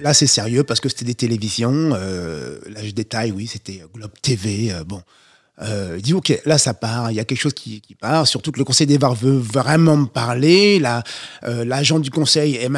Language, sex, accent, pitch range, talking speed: French, male, French, 120-160 Hz, 220 wpm